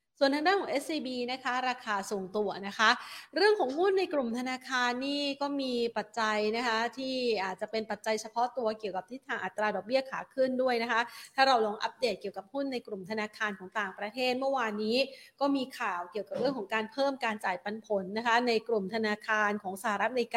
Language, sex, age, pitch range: Thai, female, 30-49, 205-255 Hz